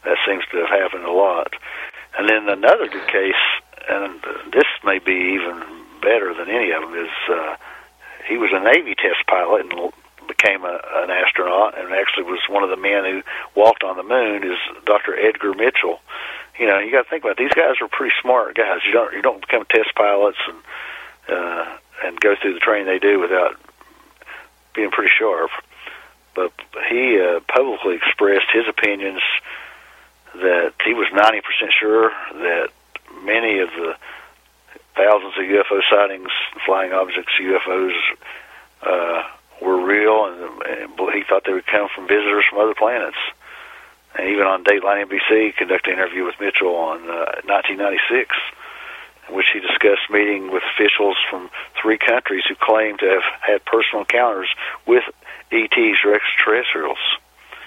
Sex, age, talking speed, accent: male, 50-69, 165 wpm, American